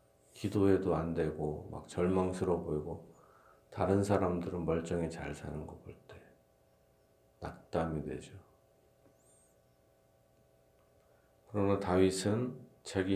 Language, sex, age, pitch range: Korean, male, 40-59, 75-95 Hz